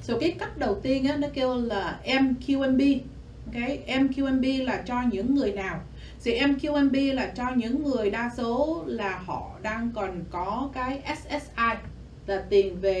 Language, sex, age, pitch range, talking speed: Vietnamese, female, 20-39, 205-275 Hz, 170 wpm